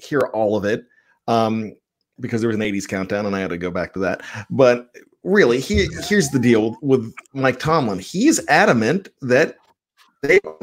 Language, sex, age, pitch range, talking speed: English, male, 40-59, 120-175 Hz, 180 wpm